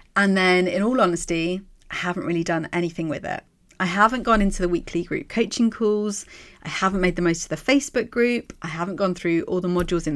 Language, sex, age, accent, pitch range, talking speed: English, female, 30-49, British, 175-245 Hz, 225 wpm